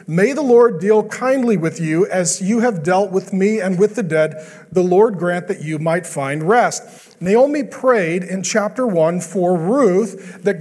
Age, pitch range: 40-59, 180-235 Hz